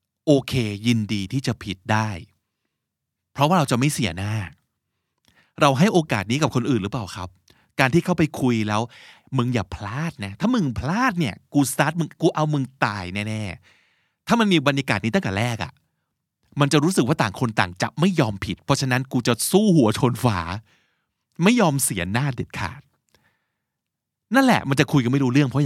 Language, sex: Thai, male